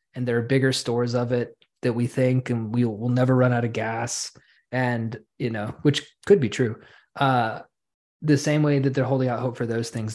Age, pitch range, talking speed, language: 20-39, 120-135 Hz, 220 wpm, English